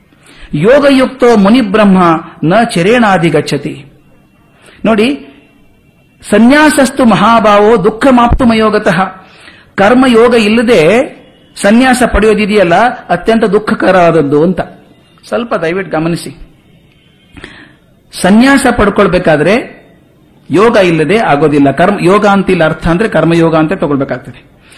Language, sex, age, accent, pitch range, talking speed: Kannada, male, 50-69, native, 160-220 Hz, 80 wpm